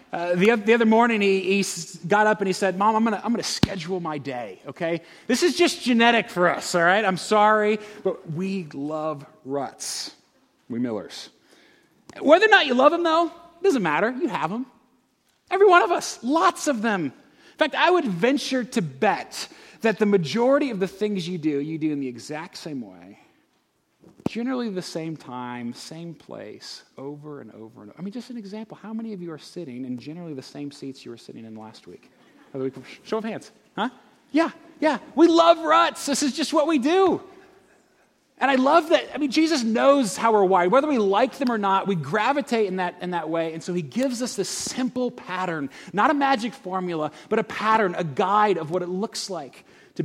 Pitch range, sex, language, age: 160-260 Hz, male, English, 30-49